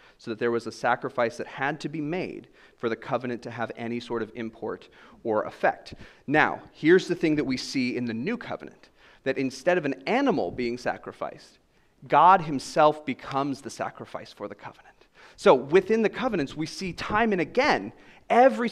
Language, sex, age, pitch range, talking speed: English, male, 30-49, 125-180 Hz, 185 wpm